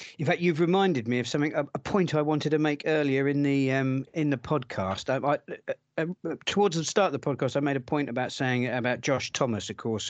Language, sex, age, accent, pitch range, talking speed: English, male, 40-59, British, 110-145 Hz, 240 wpm